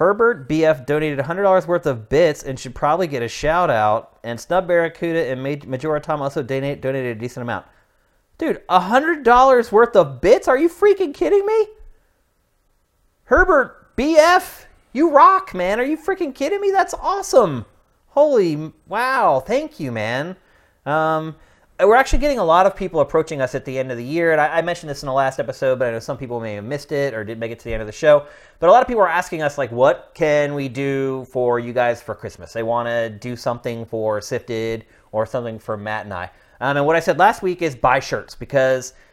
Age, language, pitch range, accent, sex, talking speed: 30-49, English, 125-185 Hz, American, male, 210 wpm